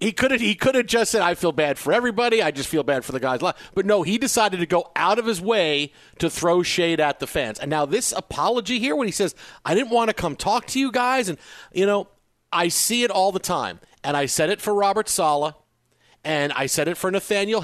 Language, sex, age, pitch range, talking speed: English, male, 50-69, 150-205 Hz, 250 wpm